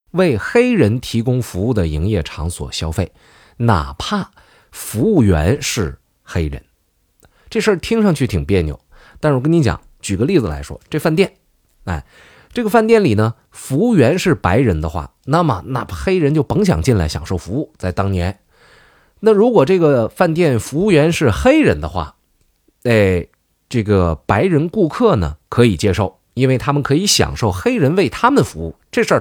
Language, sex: Chinese, male